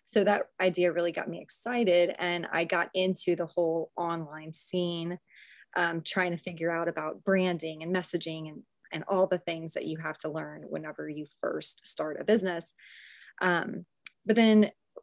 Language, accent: English, American